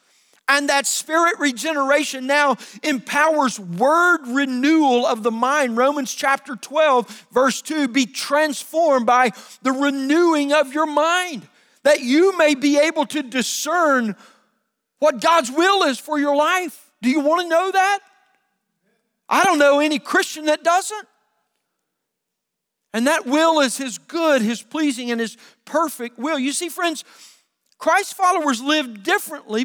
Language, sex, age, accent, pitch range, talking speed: English, male, 40-59, American, 245-315 Hz, 140 wpm